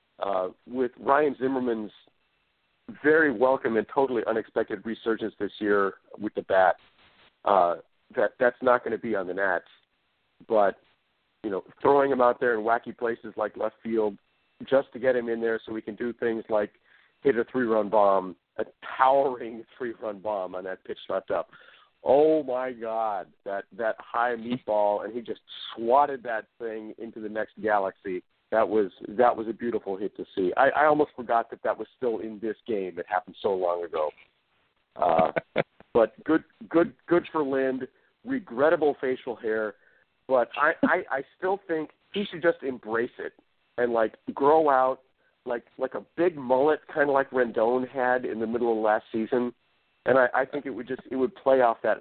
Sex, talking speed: male, 180 wpm